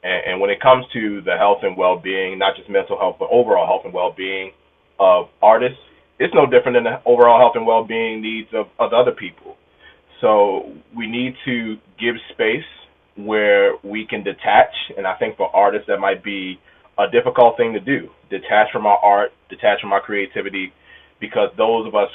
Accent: American